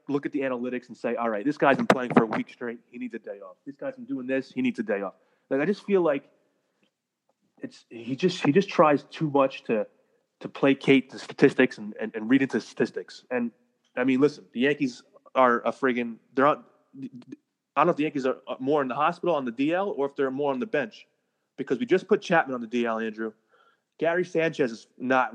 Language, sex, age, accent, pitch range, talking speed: English, male, 30-49, American, 130-165 Hz, 235 wpm